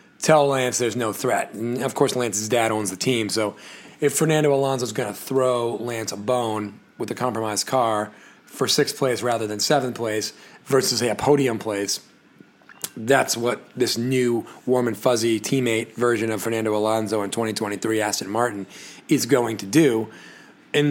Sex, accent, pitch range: male, American, 110-130 Hz